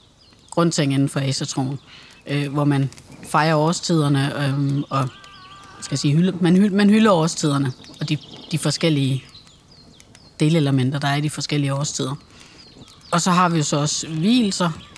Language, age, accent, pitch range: English, 30-49, Danish, 145-170 Hz